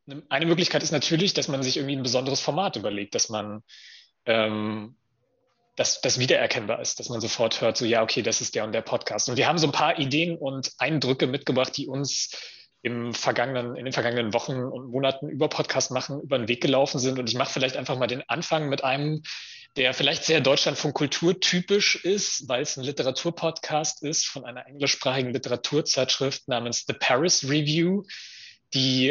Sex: male